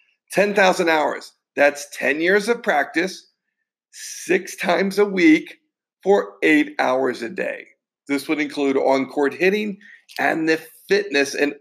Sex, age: male, 50-69